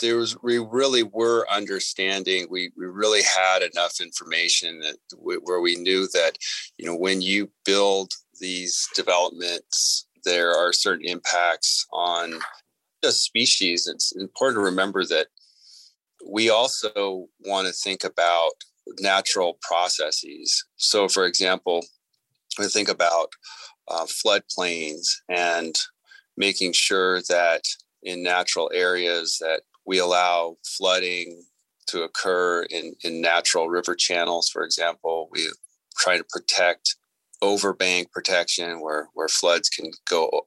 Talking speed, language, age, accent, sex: 125 wpm, English, 30-49, American, male